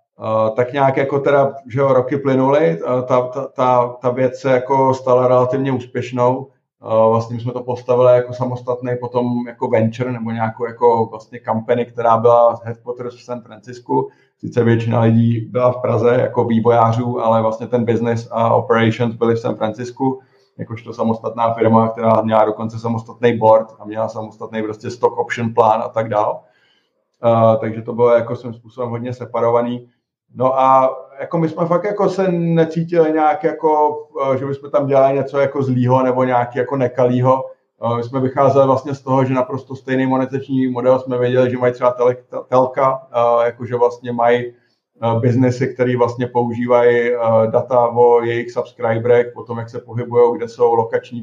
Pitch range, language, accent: 115-130 Hz, Czech, native